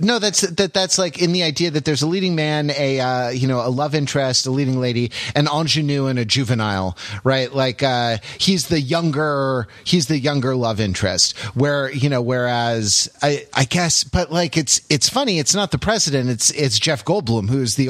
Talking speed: 205 wpm